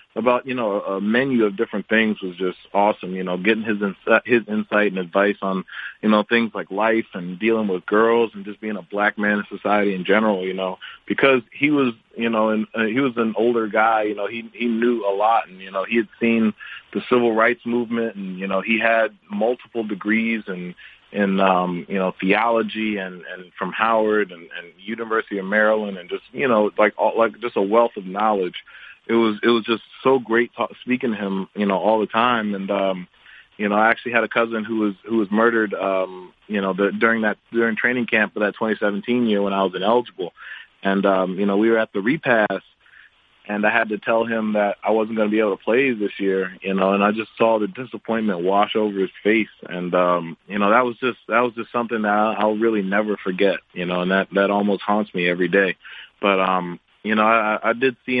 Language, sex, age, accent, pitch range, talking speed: English, male, 30-49, American, 100-115 Hz, 230 wpm